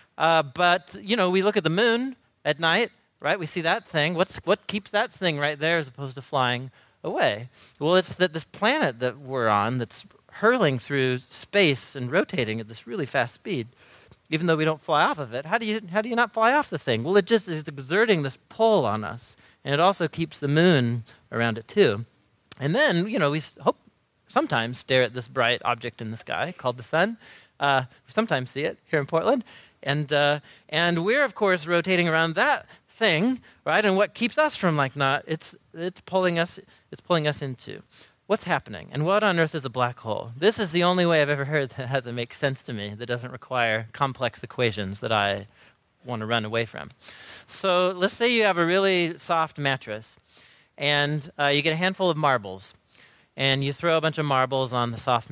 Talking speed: 220 wpm